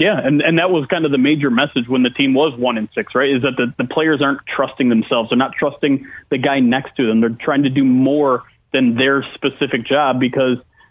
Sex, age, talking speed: male, 30-49, 240 wpm